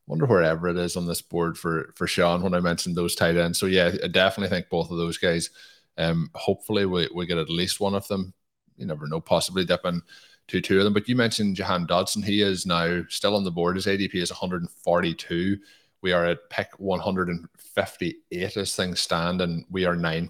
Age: 20-39